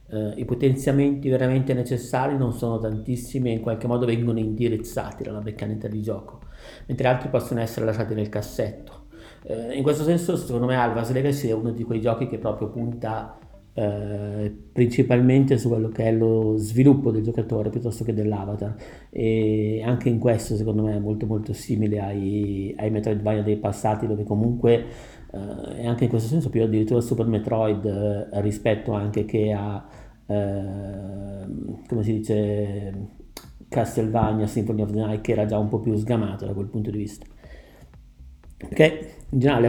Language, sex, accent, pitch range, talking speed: Italian, male, native, 105-120 Hz, 165 wpm